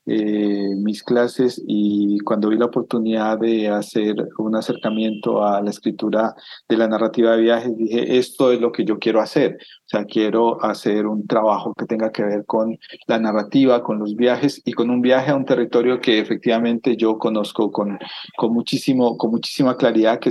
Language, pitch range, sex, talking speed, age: Spanish, 110-125 Hz, male, 185 wpm, 40-59